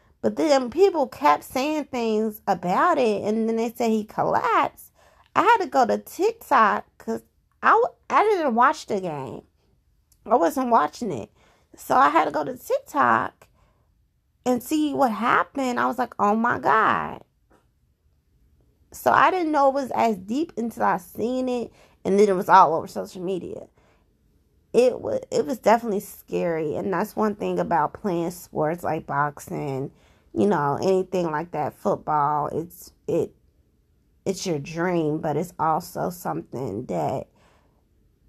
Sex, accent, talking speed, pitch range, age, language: female, American, 155 wpm, 170-240 Hz, 20-39, English